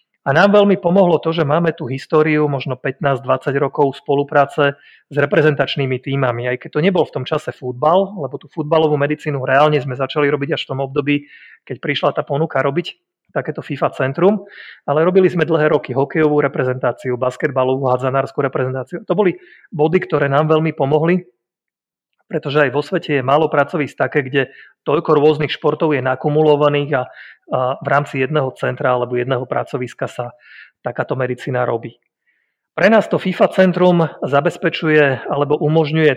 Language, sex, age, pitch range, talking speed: Slovak, male, 30-49, 135-160 Hz, 160 wpm